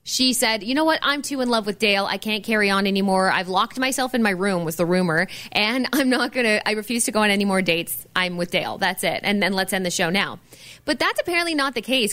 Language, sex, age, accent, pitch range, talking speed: English, female, 20-39, American, 190-250 Hz, 275 wpm